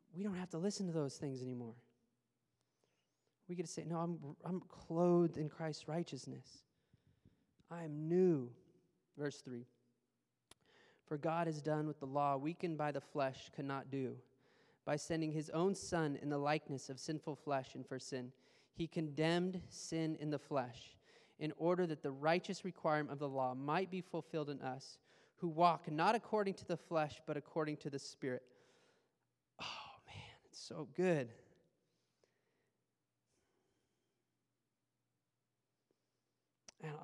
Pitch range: 145-180 Hz